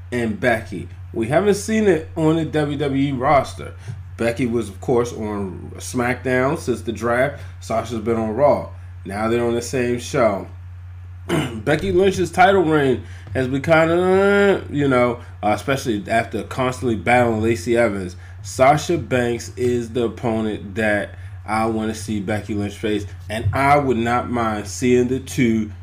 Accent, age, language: American, 20-39, English